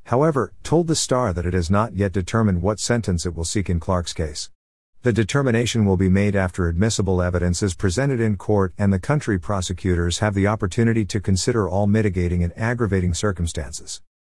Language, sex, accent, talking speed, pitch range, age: English, male, American, 185 wpm, 90-110 Hz, 50-69